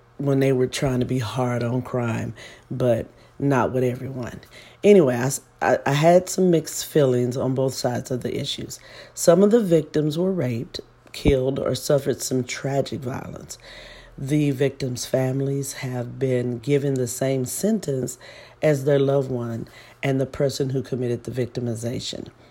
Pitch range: 125-140 Hz